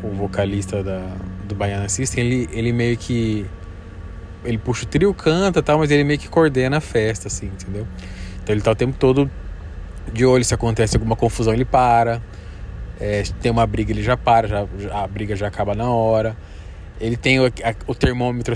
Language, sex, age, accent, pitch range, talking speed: Portuguese, male, 20-39, Brazilian, 105-130 Hz, 195 wpm